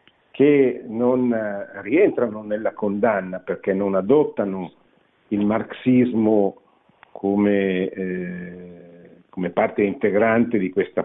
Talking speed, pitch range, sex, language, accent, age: 85 wpm, 95-130 Hz, male, Italian, native, 50-69